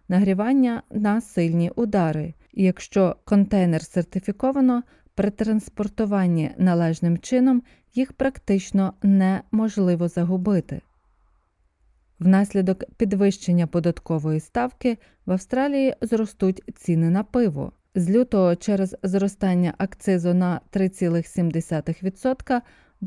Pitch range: 170-225 Hz